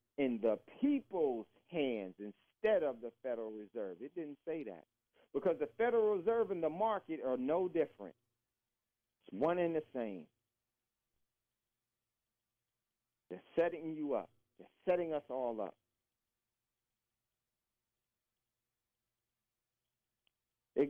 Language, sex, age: English, male, 50-69